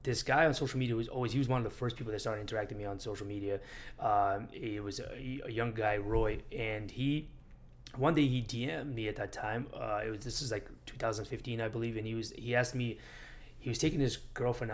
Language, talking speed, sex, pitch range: English, 245 wpm, male, 105-130 Hz